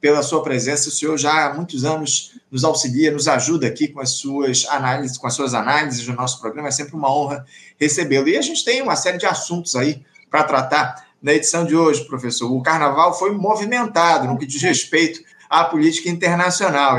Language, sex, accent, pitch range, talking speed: Portuguese, male, Brazilian, 140-175 Hz, 200 wpm